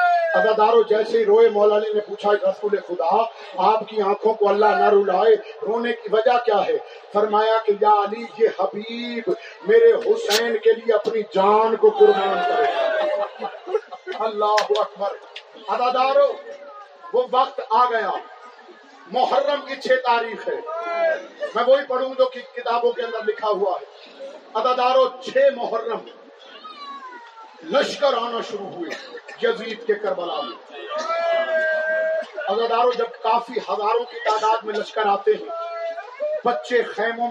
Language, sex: Urdu, male